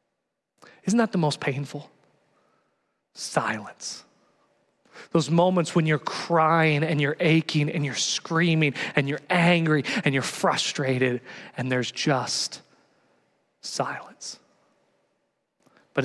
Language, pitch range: English, 145-195 Hz